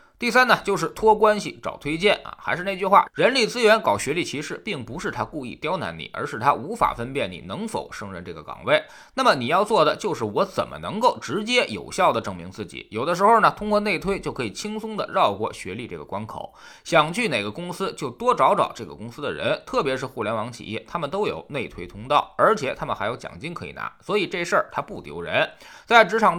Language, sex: Chinese, male